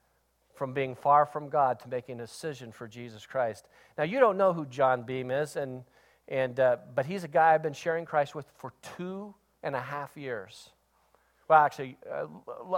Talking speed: 190 wpm